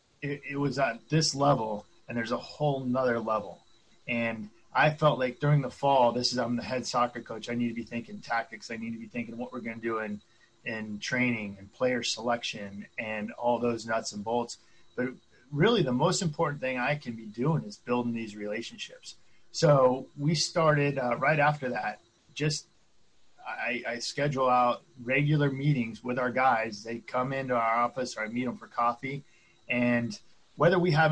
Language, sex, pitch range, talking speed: English, male, 120-145 Hz, 190 wpm